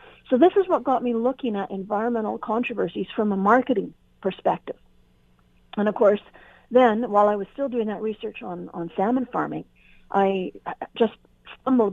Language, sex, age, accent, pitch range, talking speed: English, female, 50-69, American, 195-240 Hz, 160 wpm